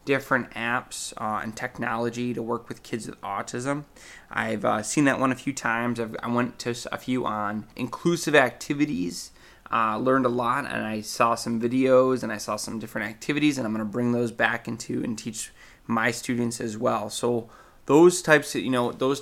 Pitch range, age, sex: 115-135 Hz, 20-39, male